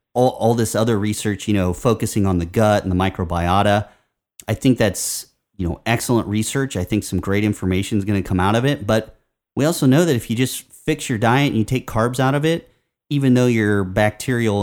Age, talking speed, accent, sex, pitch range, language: 30-49, 225 wpm, American, male, 95-120 Hz, English